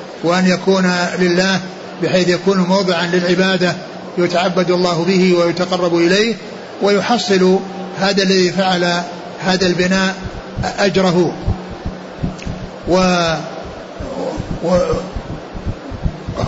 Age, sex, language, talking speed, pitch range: 60-79, male, Arabic, 75 wpm, 180-200 Hz